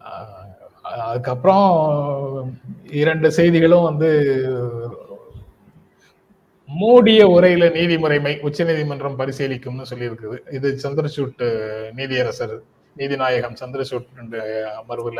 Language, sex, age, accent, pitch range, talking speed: Tamil, male, 30-49, native, 125-165 Hz, 70 wpm